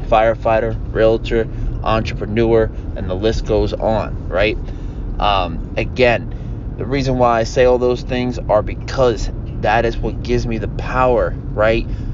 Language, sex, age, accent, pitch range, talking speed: English, male, 20-39, American, 105-125 Hz, 145 wpm